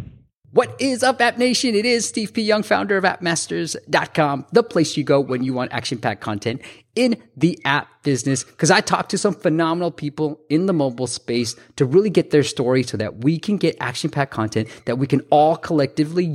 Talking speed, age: 200 wpm, 20-39